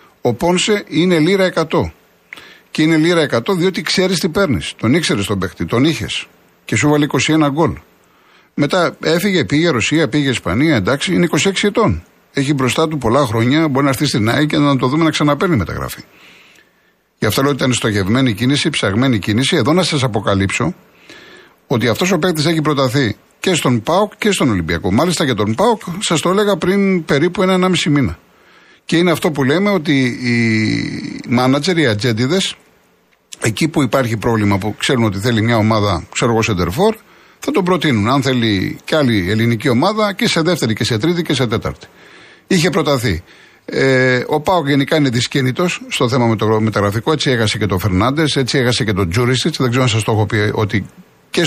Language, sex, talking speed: Greek, male, 190 wpm